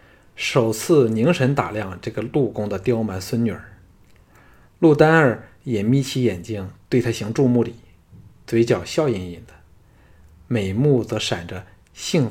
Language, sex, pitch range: Chinese, male, 100-135 Hz